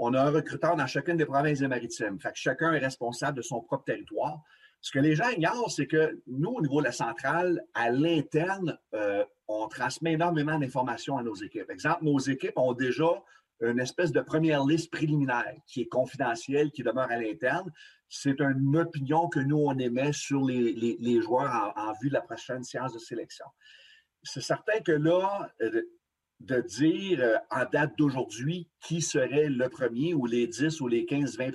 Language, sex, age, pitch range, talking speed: French, male, 40-59, 130-165 Hz, 195 wpm